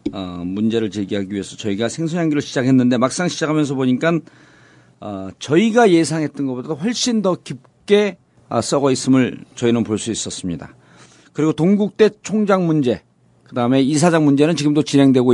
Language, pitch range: Korean, 120-170 Hz